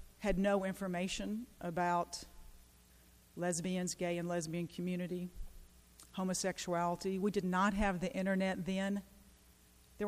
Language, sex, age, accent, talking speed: English, female, 40-59, American, 105 wpm